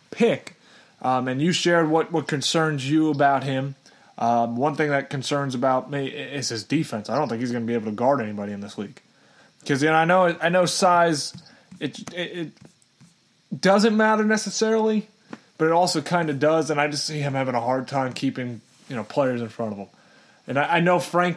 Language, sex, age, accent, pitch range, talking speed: English, male, 30-49, American, 130-160 Hz, 215 wpm